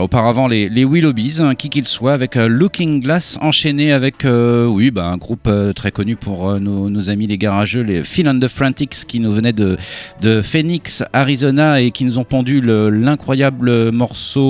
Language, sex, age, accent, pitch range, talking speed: French, male, 40-59, French, 105-145 Hz, 190 wpm